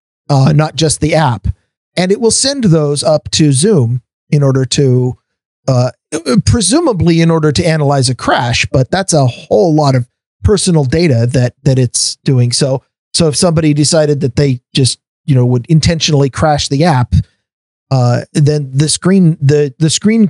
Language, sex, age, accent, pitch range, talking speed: English, male, 40-59, American, 135-170 Hz, 170 wpm